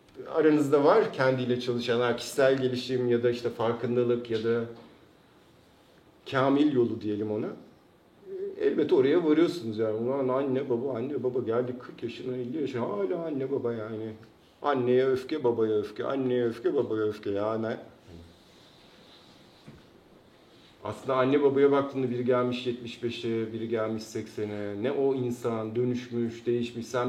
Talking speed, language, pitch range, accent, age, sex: 130 wpm, Turkish, 115-145 Hz, native, 50-69, male